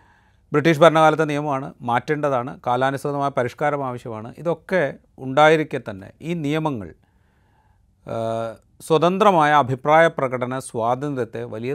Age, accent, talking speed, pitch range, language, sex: 40-59, native, 85 wpm, 115-155 Hz, Malayalam, male